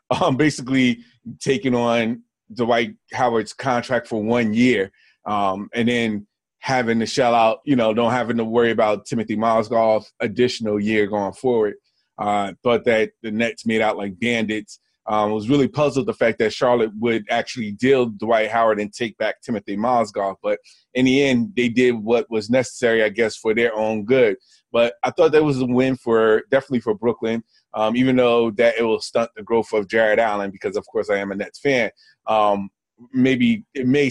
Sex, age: male, 20-39